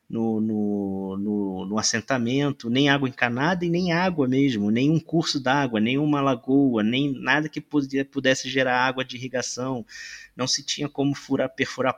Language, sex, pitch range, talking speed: English, male, 110-145 Hz, 140 wpm